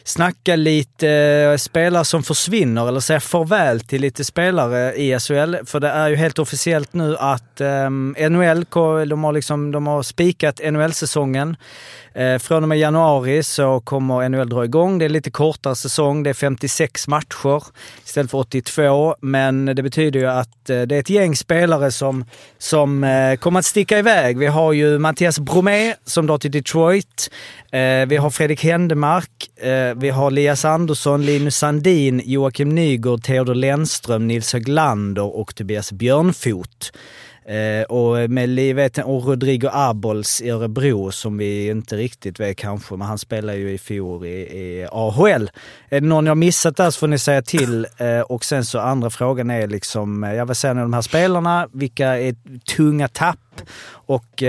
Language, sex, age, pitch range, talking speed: Swedish, male, 30-49, 120-155 Hz, 165 wpm